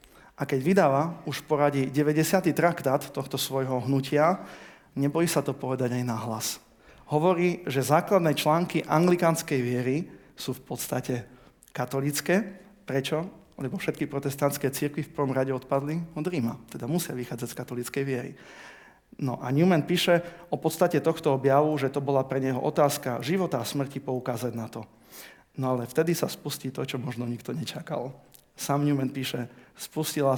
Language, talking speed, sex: Slovak, 150 wpm, male